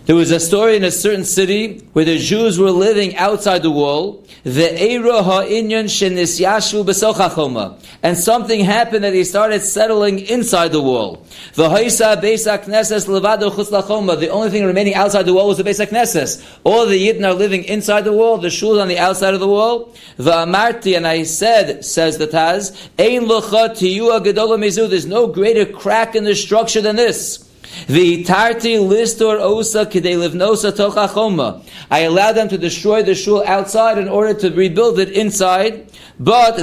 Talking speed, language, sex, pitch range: 160 wpm, English, male, 180-215 Hz